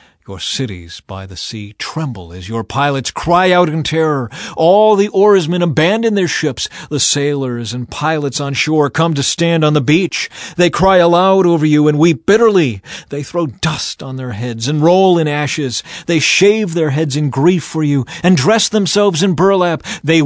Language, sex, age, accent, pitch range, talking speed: English, male, 40-59, American, 125-165 Hz, 185 wpm